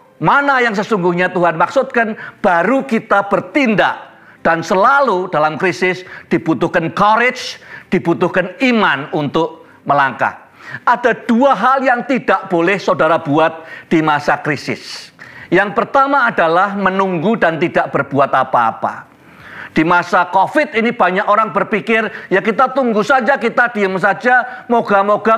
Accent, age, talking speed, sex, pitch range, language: native, 50-69, 125 wpm, male, 185-250 Hz, Indonesian